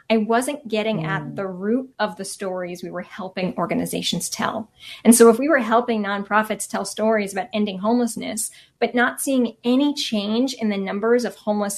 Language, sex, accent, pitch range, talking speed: English, female, American, 185-225 Hz, 185 wpm